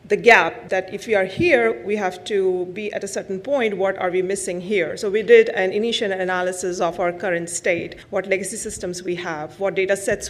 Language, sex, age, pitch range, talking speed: English, female, 40-59, 175-210 Hz, 220 wpm